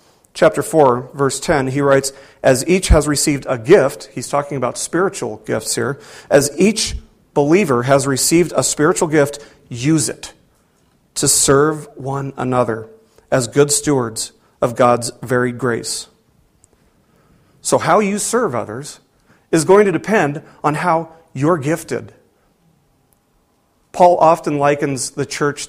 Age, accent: 40-59, American